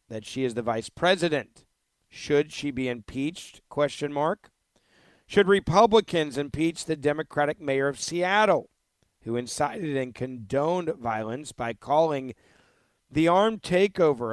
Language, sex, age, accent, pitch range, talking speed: English, male, 50-69, American, 125-165 Hz, 125 wpm